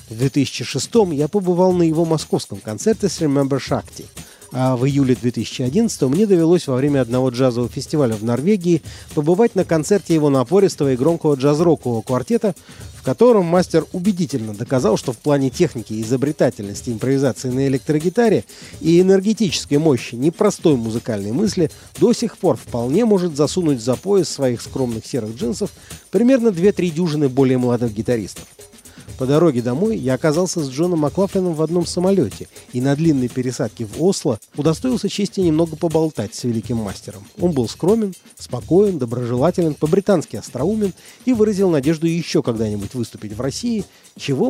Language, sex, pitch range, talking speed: Russian, male, 125-180 Hz, 150 wpm